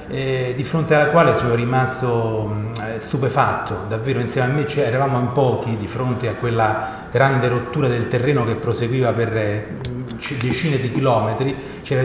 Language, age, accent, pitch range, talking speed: Italian, 40-59, native, 115-145 Hz, 165 wpm